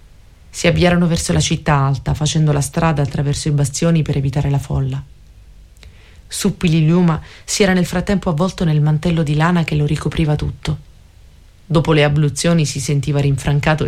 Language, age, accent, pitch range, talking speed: Italian, 30-49, native, 135-165 Hz, 155 wpm